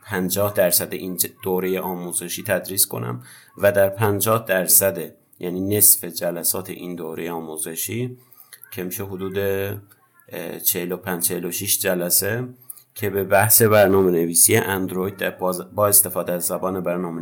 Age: 50-69